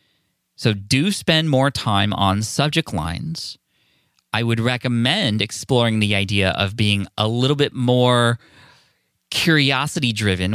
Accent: American